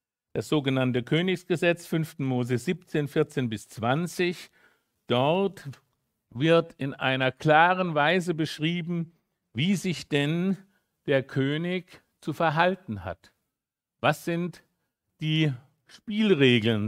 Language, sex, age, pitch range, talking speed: German, male, 60-79, 130-170 Hz, 100 wpm